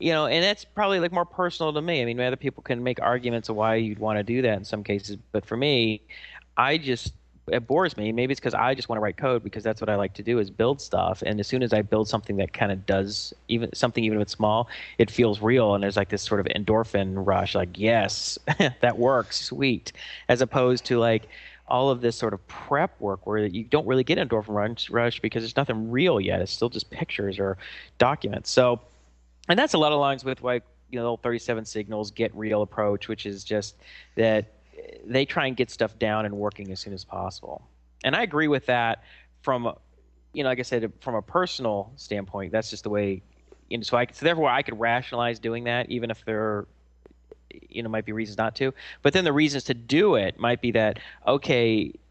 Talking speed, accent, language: 235 wpm, American, English